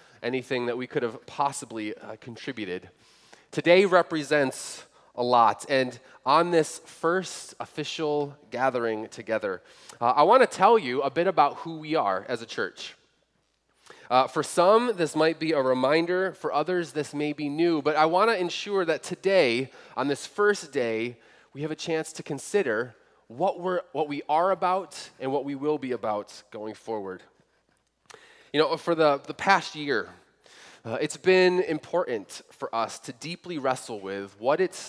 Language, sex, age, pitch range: English, male, 20-39, 135-180 Hz